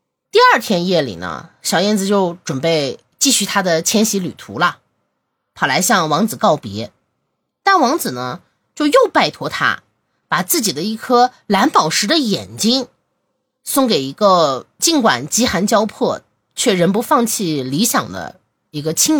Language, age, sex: Chinese, 20-39, female